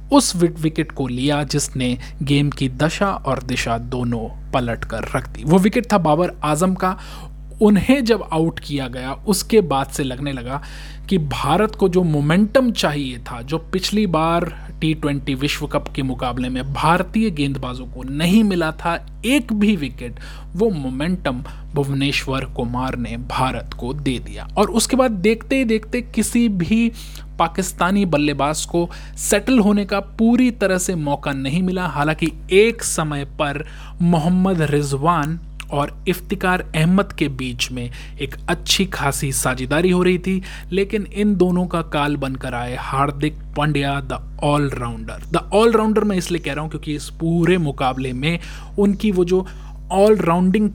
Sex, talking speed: male, 155 wpm